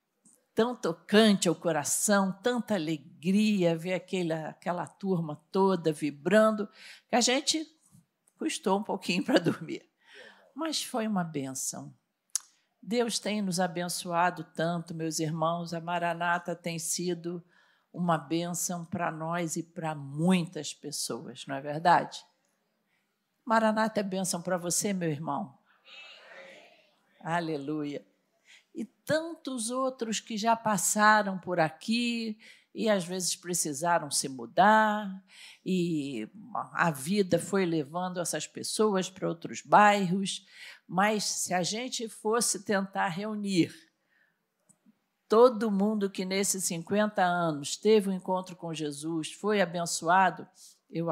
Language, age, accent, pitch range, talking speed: Portuguese, 50-69, Brazilian, 165-210 Hz, 115 wpm